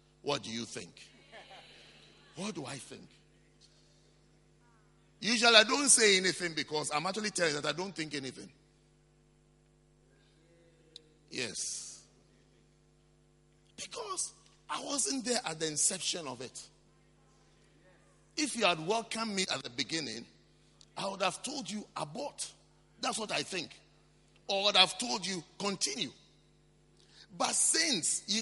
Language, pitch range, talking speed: English, 160-250 Hz, 130 wpm